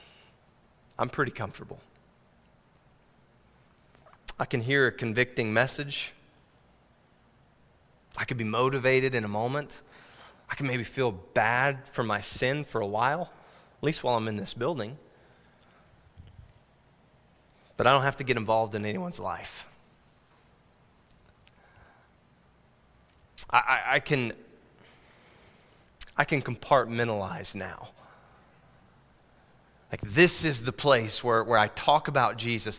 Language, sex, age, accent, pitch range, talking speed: English, male, 20-39, American, 115-140 Hz, 115 wpm